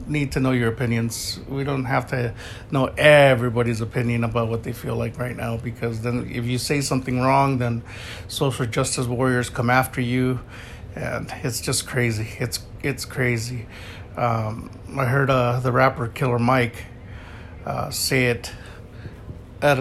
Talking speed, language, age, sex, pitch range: 160 wpm, English, 50-69, male, 115-130 Hz